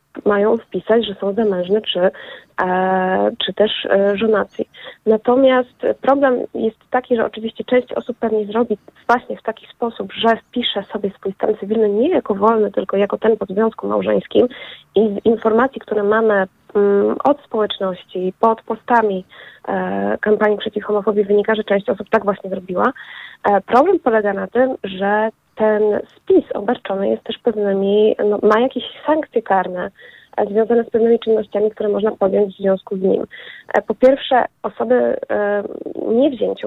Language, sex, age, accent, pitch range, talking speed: Polish, female, 20-39, native, 205-235 Hz, 155 wpm